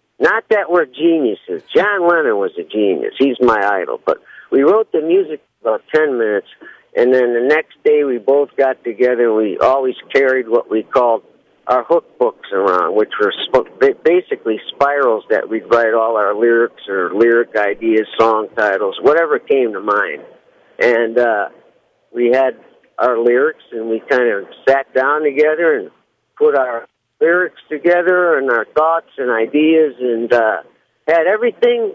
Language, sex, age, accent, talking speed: English, male, 50-69, American, 165 wpm